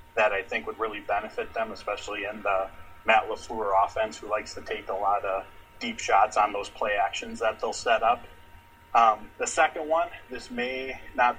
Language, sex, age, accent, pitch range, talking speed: English, male, 30-49, American, 95-120 Hz, 195 wpm